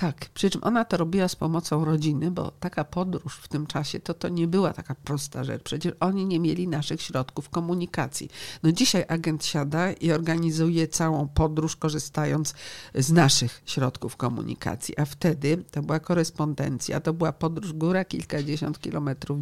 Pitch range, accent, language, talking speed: 145-175 Hz, native, Polish, 165 wpm